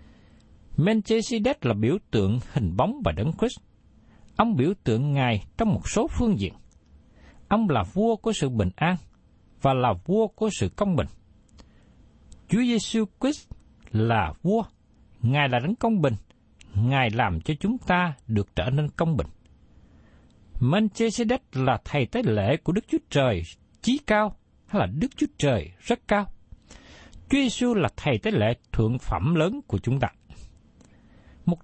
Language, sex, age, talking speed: Vietnamese, male, 60-79, 155 wpm